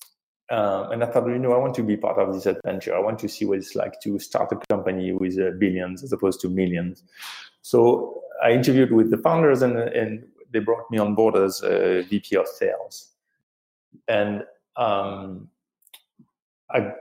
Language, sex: English, male